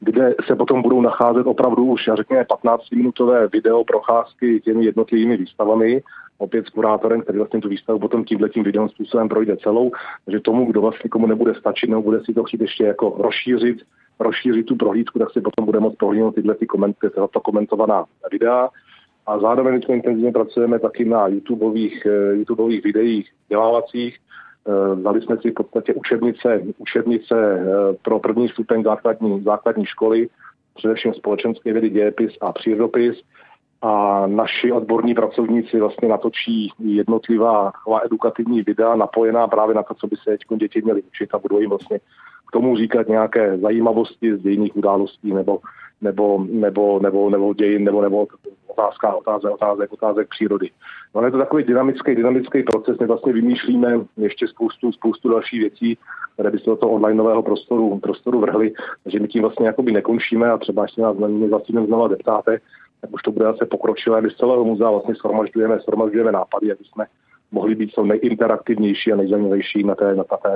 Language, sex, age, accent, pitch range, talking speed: Czech, male, 40-59, native, 105-120 Hz, 165 wpm